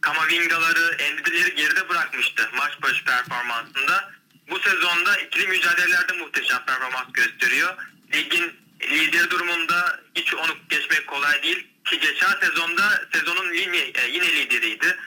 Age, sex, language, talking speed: 30-49, male, Turkish, 110 wpm